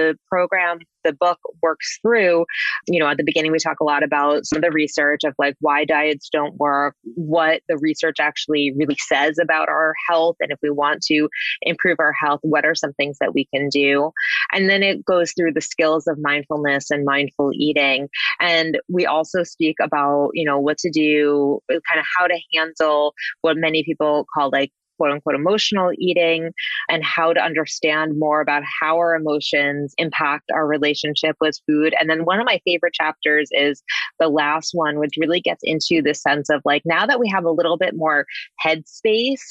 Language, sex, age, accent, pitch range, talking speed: English, female, 20-39, American, 150-175 Hz, 195 wpm